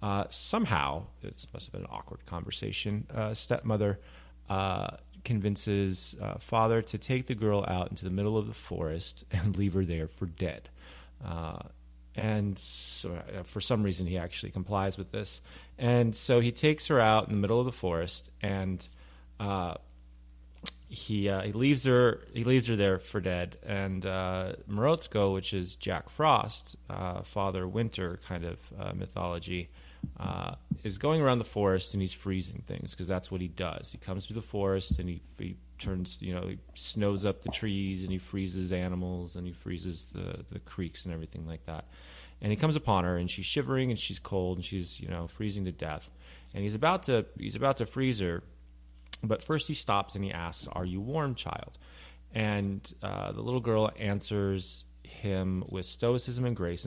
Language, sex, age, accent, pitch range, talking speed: English, male, 30-49, American, 85-105 Hz, 185 wpm